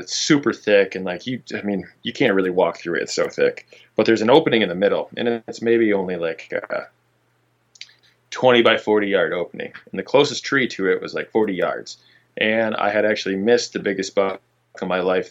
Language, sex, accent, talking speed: English, male, American, 220 wpm